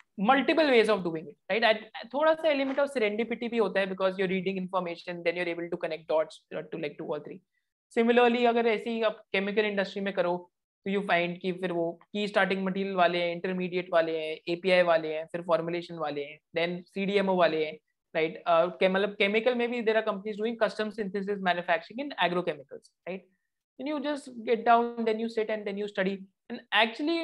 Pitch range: 180-225 Hz